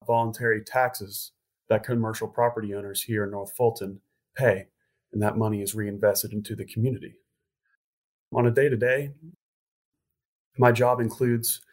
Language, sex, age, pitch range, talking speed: English, male, 30-49, 105-125 Hz, 130 wpm